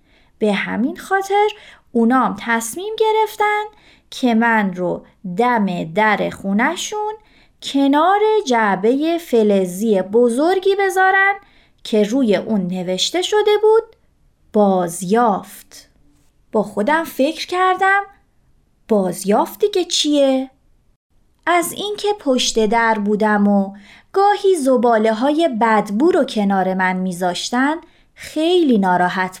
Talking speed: 100 wpm